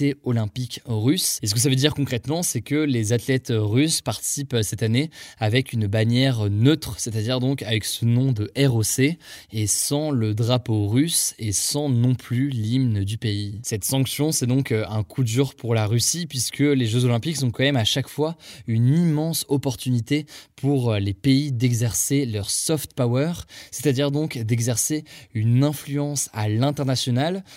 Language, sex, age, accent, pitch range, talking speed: French, male, 20-39, French, 115-140 Hz, 170 wpm